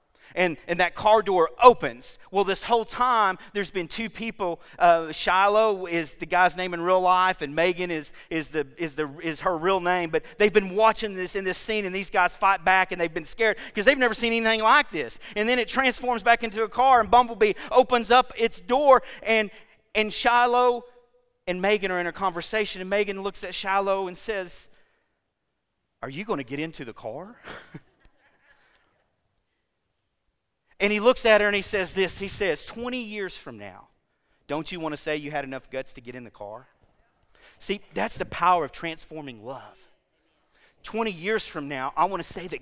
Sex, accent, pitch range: male, American, 170-230 Hz